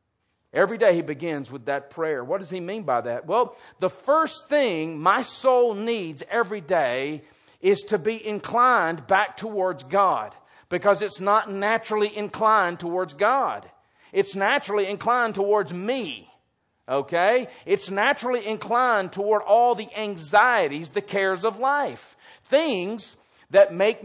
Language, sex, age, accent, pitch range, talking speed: English, male, 40-59, American, 170-235 Hz, 140 wpm